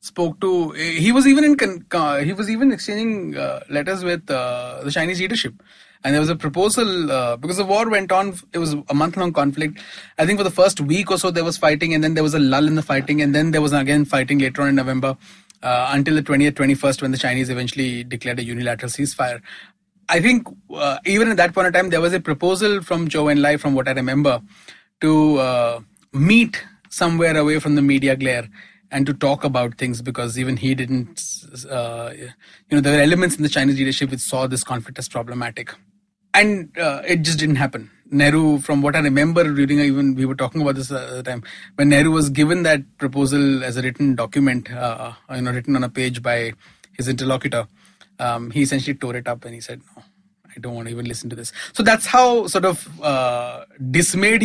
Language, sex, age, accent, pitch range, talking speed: English, male, 30-49, Indian, 130-175 Hz, 220 wpm